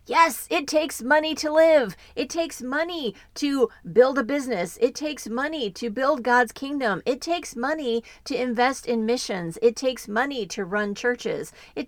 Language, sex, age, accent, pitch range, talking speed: English, female, 40-59, American, 205-270 Hz, 170 wpm